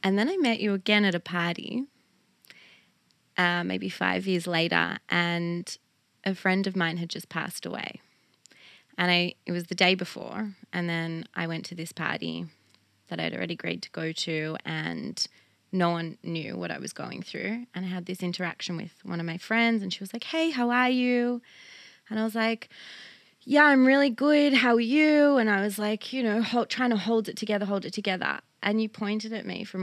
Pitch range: 170-215 Hz